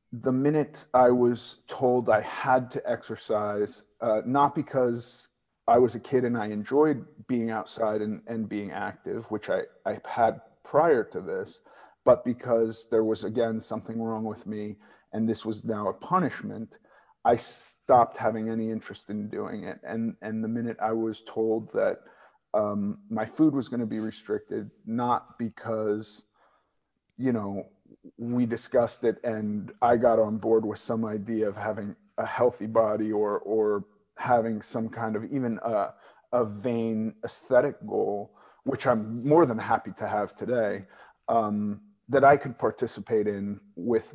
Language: English